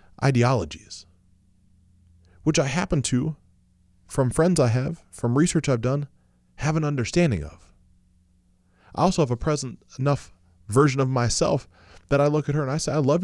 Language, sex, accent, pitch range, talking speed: English, male, American, 90-135 Hz, 165 wpm